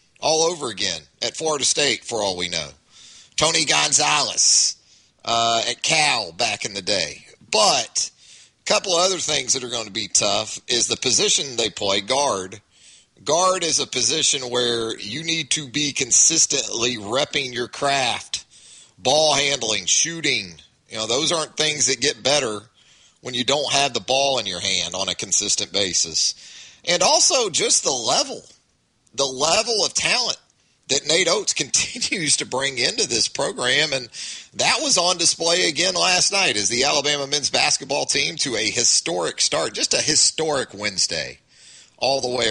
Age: 30-49